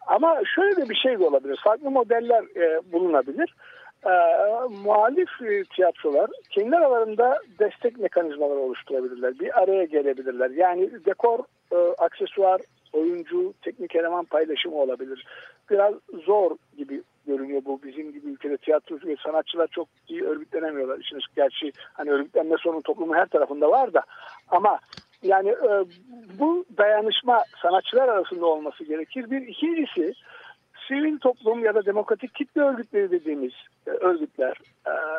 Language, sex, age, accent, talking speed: Turkish, male, 60-79, native, 115 wpm